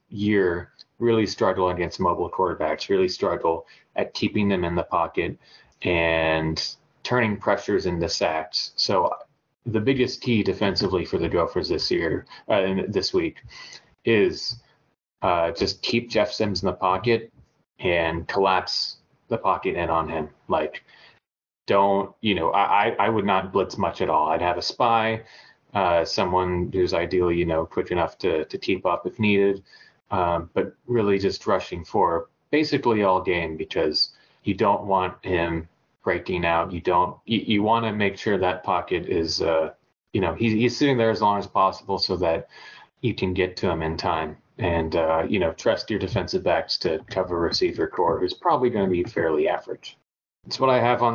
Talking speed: 175 wpm